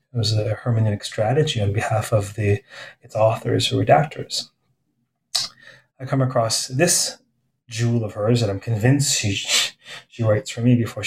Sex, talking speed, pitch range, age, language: male, 155 wpm, 110-135 Hz, 30-49, English